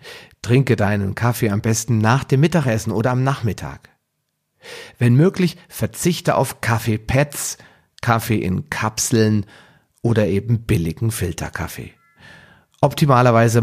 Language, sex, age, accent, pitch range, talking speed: German, male, 40-59, German, 100-125 Hz, 105 wpm